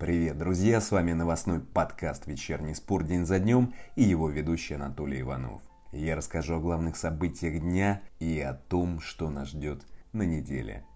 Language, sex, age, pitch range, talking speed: Russian, male, 30-49, 75-95 Hz, 165 wpm